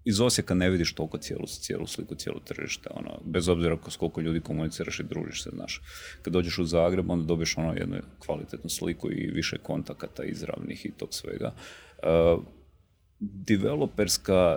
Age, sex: 40-59, male